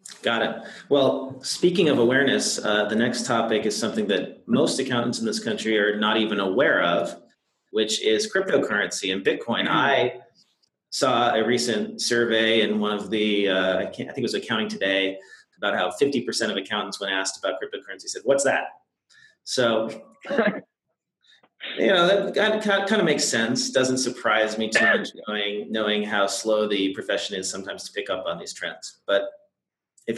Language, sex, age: English, male, 30-49